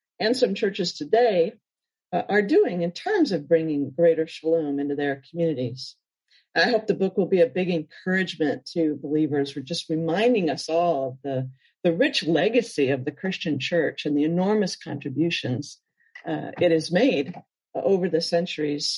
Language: English